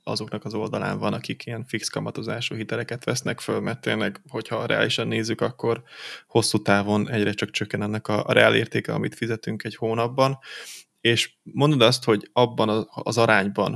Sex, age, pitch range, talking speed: male, 20-39, 105-120 Hz, 165 wpm